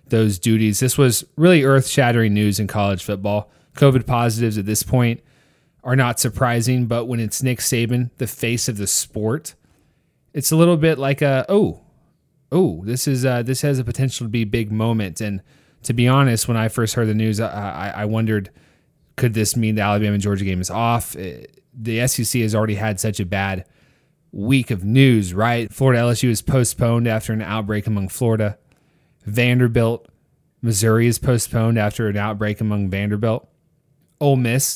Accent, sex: American, male